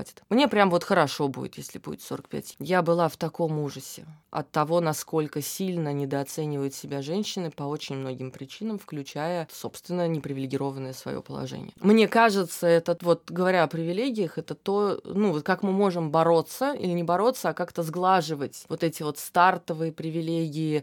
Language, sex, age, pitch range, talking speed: Russian, female, 20-39, 140-175 Hz, 160 wpm